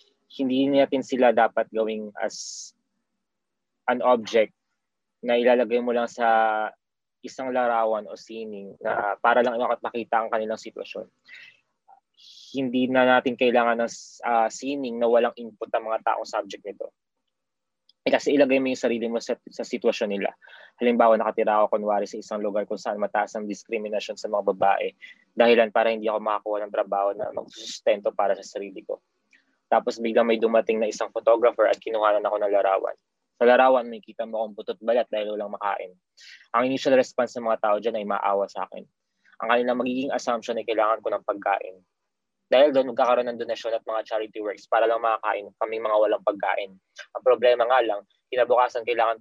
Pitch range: 110-125 Hz